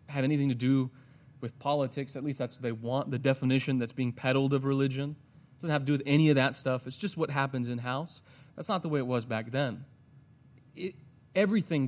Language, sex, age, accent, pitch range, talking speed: English, male, 30-49, American, 130-155 Hz, 220 wpm